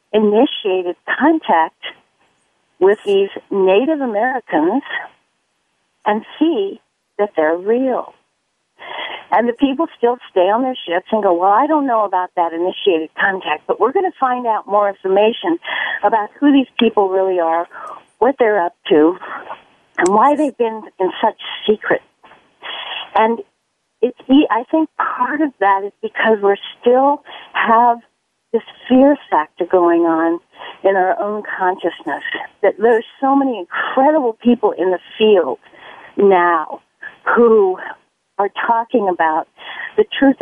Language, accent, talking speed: English, American, 135 wpm